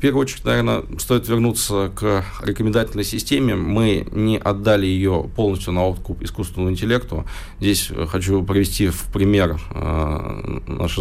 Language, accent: Russian, native